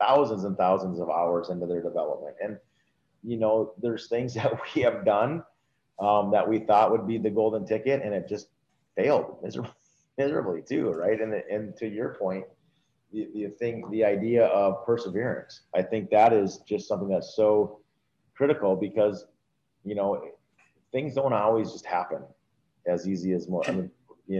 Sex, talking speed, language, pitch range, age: male, 165 wpm, English, 90-115 Hz, 30-49